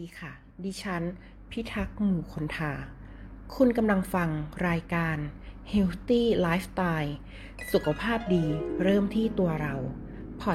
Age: 20-39